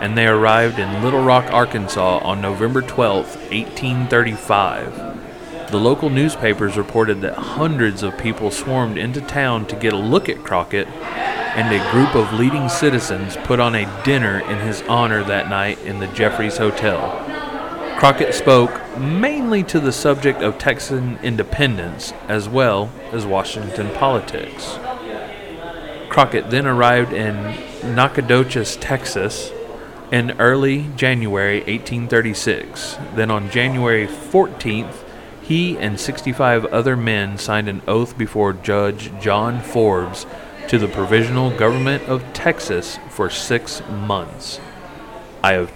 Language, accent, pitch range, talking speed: English, American, 105-130 Hz, 130 wpm